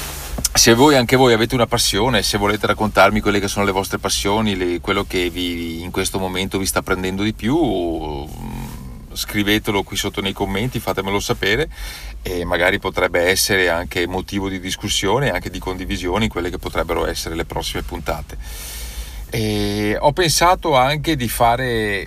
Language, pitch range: Italian, 90-110 Hz